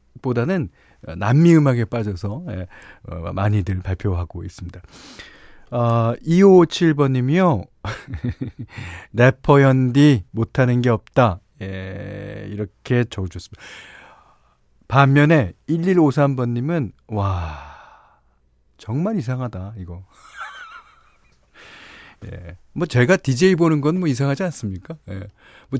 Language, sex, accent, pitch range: Korean, male, native, 100-145 Hz